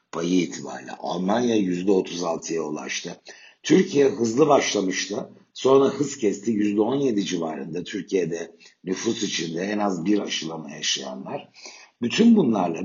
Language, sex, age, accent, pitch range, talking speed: Turkish, male, 60-79, native, 95-120 Hz, 105 wpm